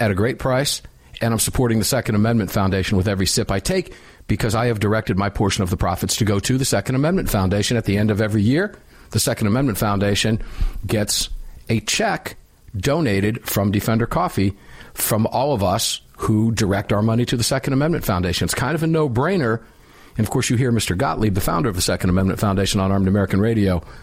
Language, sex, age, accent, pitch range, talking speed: English, male, 50-69, American, 100-115 Hz, 210 wpm